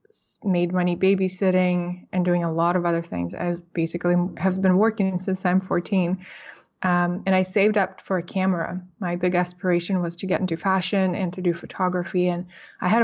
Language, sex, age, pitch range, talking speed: English, female, 20-39, 180-195 Hz, 190 wpm